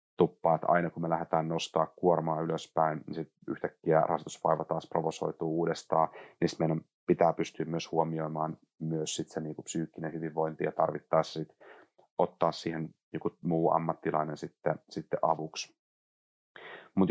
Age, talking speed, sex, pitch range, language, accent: 30-49, 135 wpm, male, 80-90 Hz, Finnish, native